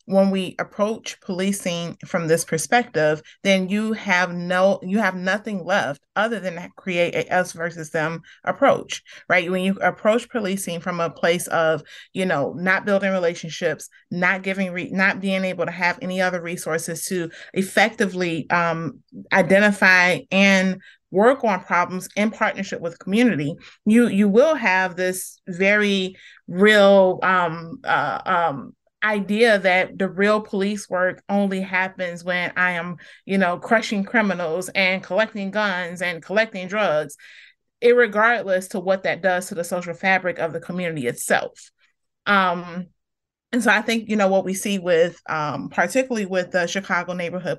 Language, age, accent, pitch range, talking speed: English, 30-49, American, 175-205 Hz, 155 wpm